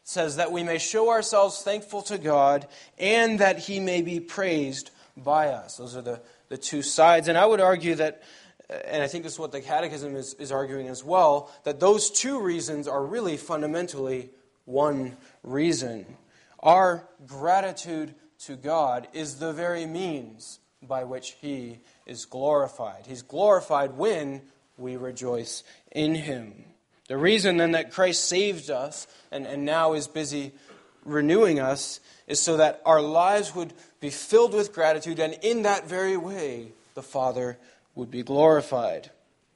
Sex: male